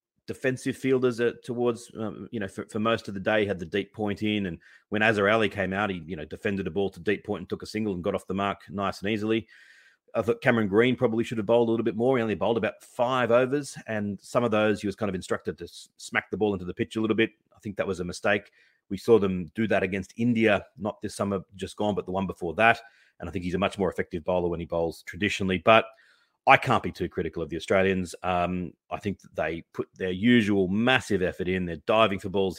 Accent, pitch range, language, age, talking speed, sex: Australian, 95-110 Hz, English, 30-49, 260 wpm, male